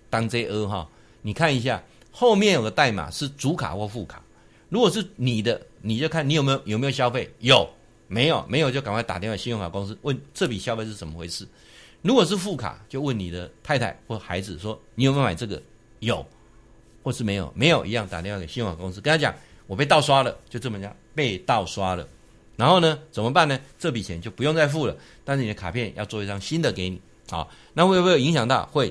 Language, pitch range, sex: Chinese, 100-150 Hz, male